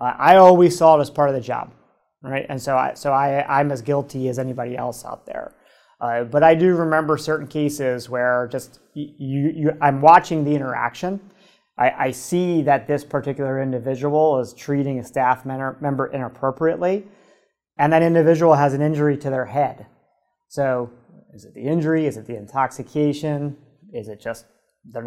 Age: 30-49